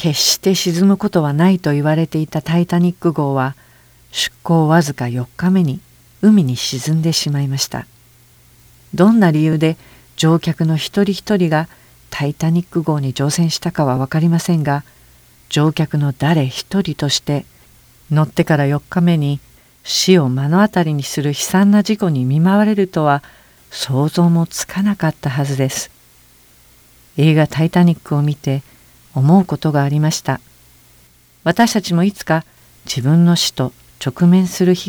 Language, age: Japanese, 50-69